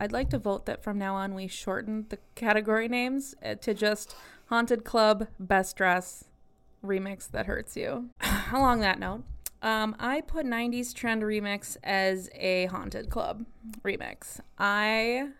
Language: English